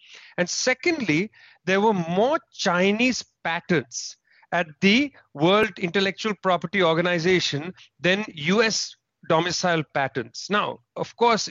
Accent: Indian